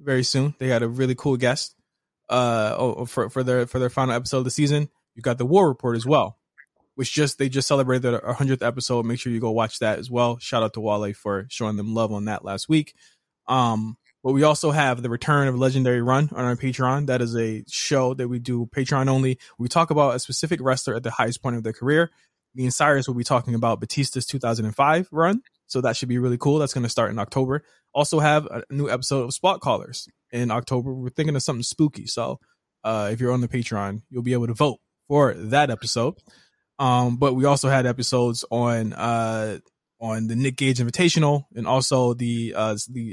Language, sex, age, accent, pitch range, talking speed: English, male, 20-39, American, 115-135 Hz, 220 wpm